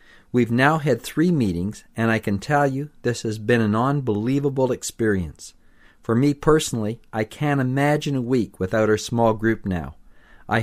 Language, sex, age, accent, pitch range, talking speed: English, male, 50-69, American, 100-130 Hz, 170 wpm